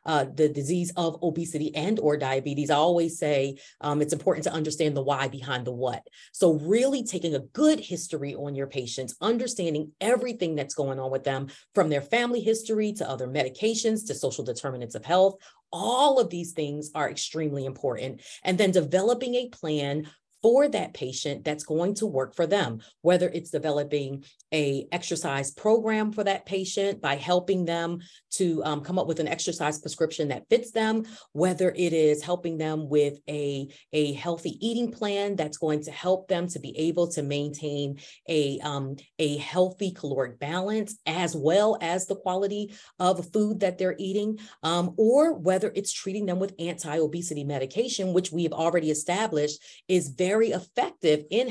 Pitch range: 150-200 Hz